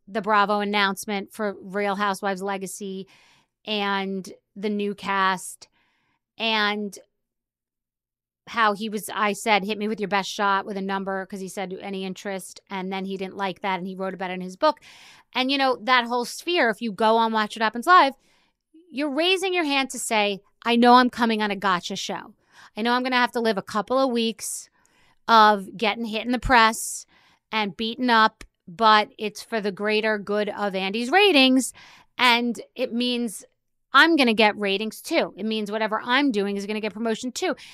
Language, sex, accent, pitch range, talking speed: English, female, American, 195-235 Hz, 195 wpm